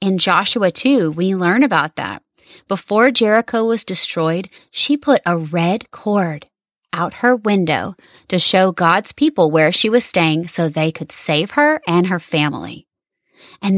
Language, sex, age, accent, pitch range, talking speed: English, female, 30-49, American, 170-225 Hz, 155 wpm